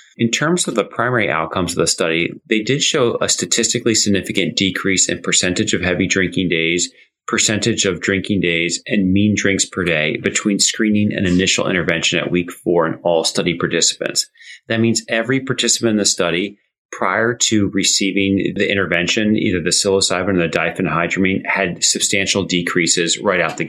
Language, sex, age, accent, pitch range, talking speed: English, male, 30-49, American, 90-110 Hz, 170 wpm